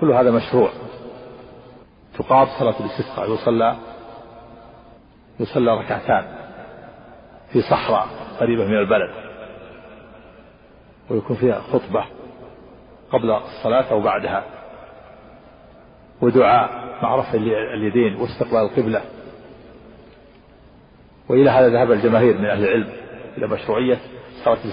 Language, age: Arabic, 50-69